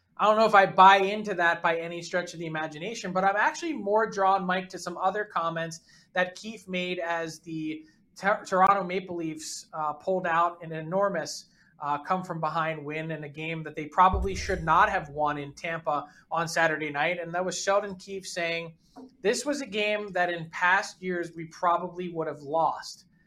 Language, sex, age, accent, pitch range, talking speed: English, male, 20-39, American, 170-210 Hz, 195 wpm